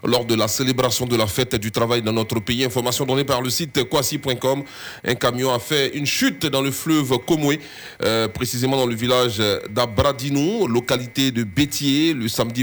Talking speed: 185 wpm